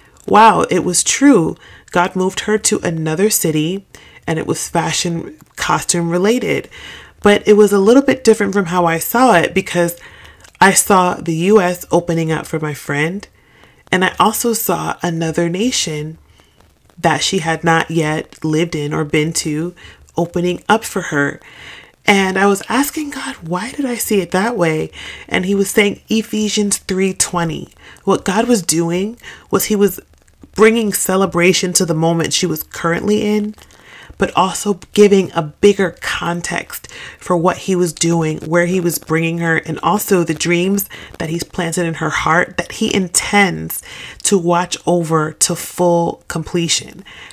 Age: 30-49